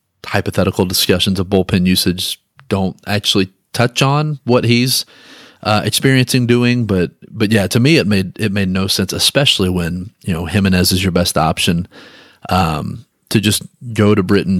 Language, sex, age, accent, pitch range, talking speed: English, male, 30-49, American, 90-105 Hz, 165 wpm